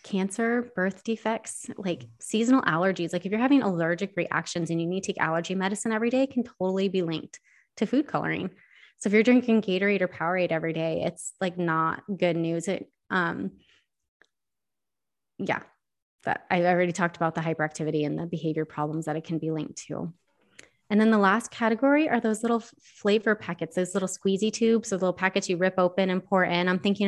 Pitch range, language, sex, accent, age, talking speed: 170-210 Hz, English, female, American, 20-39, 190 wpm